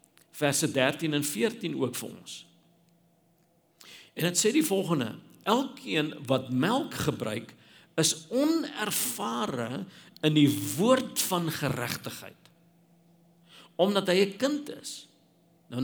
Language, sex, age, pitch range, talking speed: English, male, 50-69, 140-175 Hz, 110 wpm